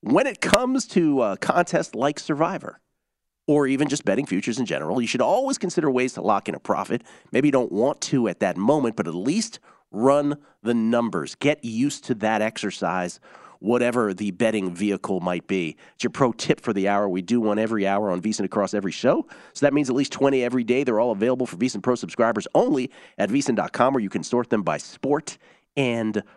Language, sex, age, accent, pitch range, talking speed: English, male, 40-59, American, 100-130 Hz, 210 wpm